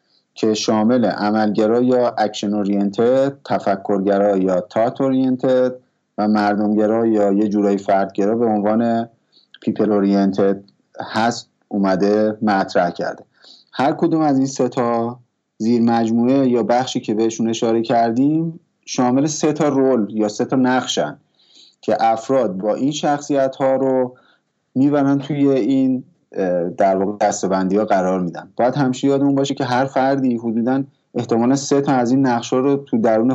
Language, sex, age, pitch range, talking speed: Persian, male, 30-49, 105-125 Hz, 140 wpm